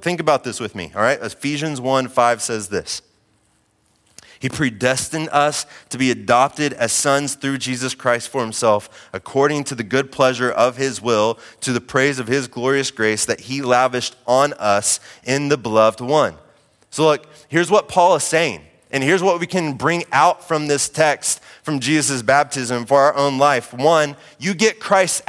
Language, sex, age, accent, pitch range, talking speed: English, male, 20-39, American, 130-205 Hz, 185 wpm